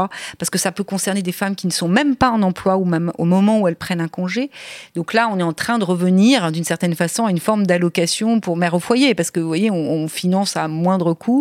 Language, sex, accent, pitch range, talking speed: French, female, French, 170-215 Hz, 275 wpm